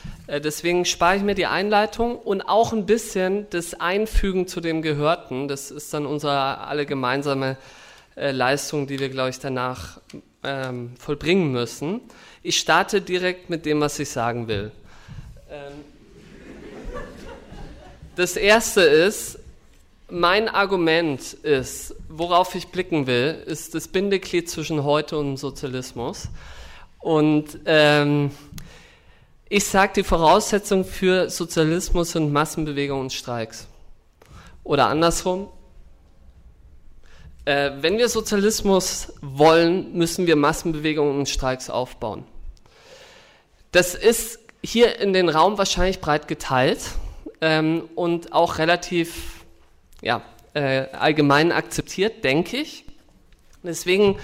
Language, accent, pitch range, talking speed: German, German, 140-185 Hz, 115 wpm